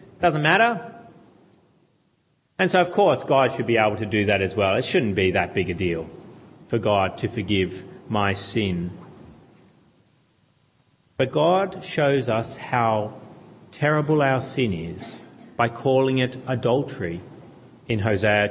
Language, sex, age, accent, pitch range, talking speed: English, male, 40-59, Australian, 115-155 Hz, 140 wpm